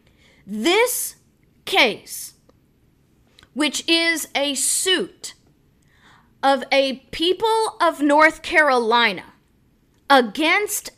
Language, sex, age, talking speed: English, female, 40-59, 70 wpm